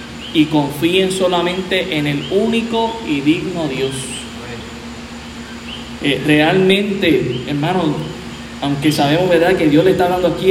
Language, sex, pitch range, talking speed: Spanish, male, 150-195 Hz, 120 wpm